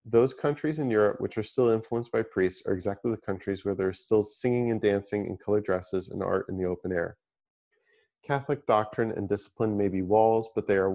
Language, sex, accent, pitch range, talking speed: English, male, American, 100-120 Hz, 220 wpm